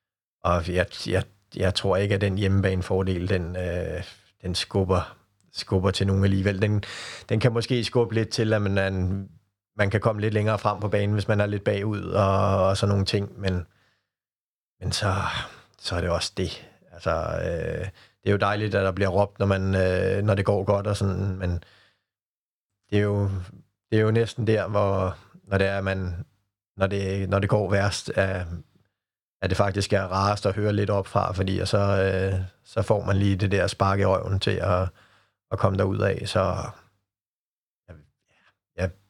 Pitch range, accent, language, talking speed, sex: 95-105 Hz, native, Danish, 190 wpm, male